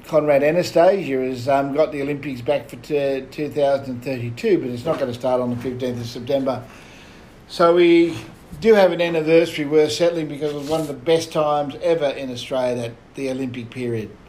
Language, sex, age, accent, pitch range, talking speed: English, male, 60-79, Australian, 130-160 Hz, 185 wpm